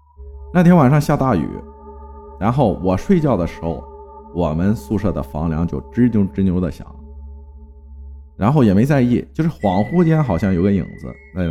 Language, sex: Chinese, male